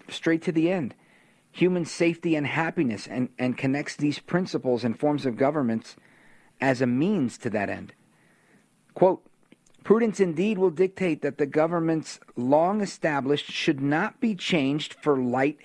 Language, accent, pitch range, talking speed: English, American, 125-175 Hz, 150 wpm